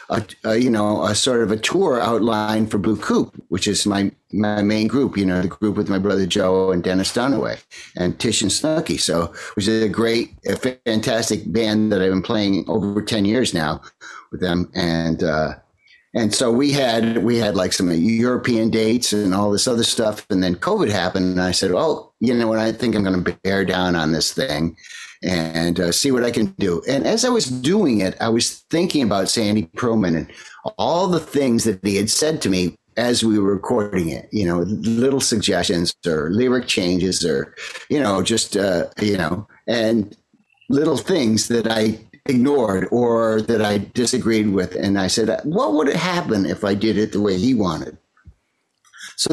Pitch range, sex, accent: 95-115 Hz, male, American